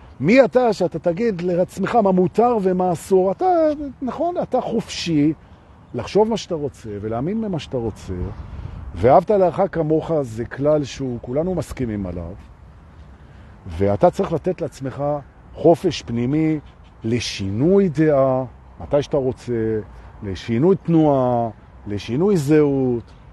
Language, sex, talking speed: Hebrew, male, 110 wpm